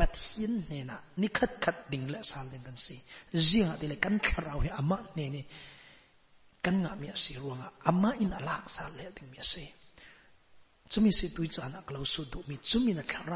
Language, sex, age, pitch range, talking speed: English, male, 40-59, 140-185 Hz, 145 wpm